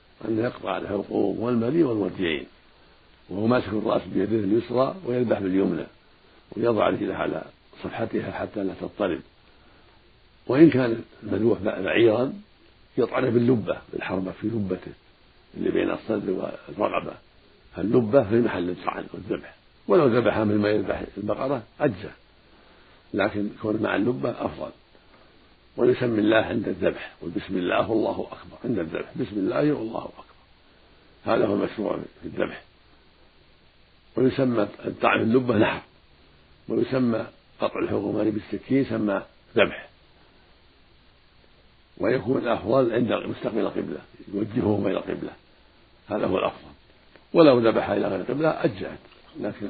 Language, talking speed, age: Arabic, 115 wpm, 60-79